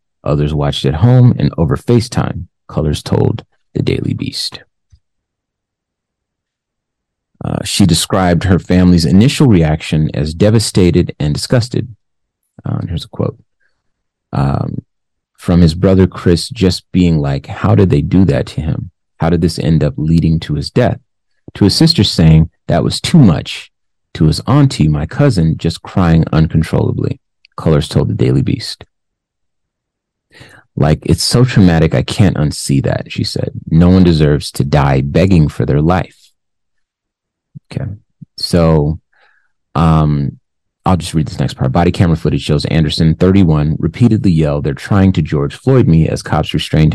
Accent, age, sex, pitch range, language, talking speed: American, 30-49, male, 75-100 Hz, English, 150 wpm